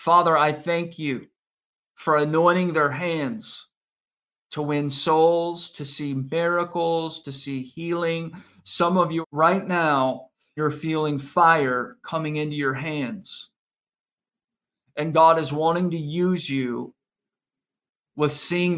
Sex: male